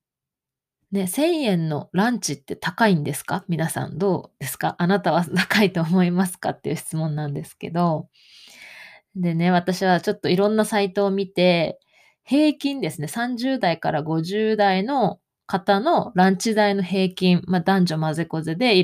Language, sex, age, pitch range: Japanese, female, 20-39, 165-215 Hz